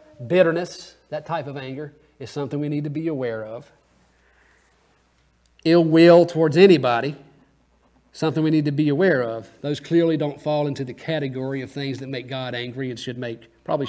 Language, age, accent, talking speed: English, 40-59, American, 175 wpm